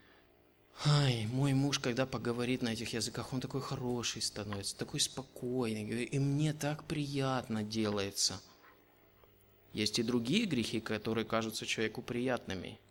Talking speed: 125 wpm